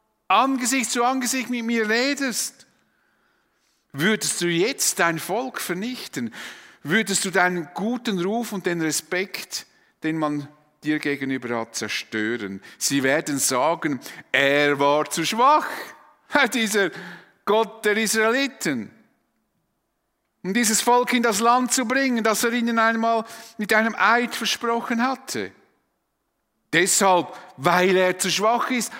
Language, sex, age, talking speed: German, male, 50-69, 125 wpm